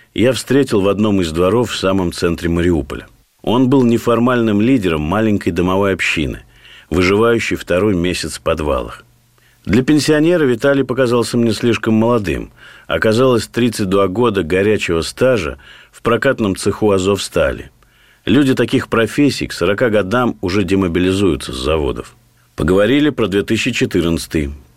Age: 50-69